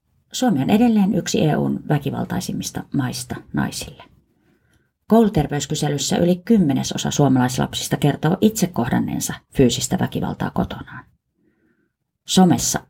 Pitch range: 145-215 Hz